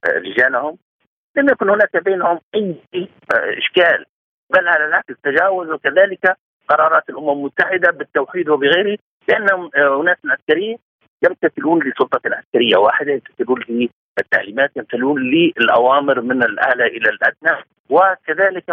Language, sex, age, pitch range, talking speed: Arabic, male, 50-69, 150-220 Hz, 105 wpm